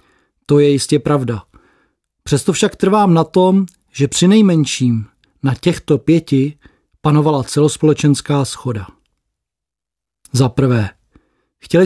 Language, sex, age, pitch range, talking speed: Czech, male, 40-59, 140-175 Hz, 105 wpm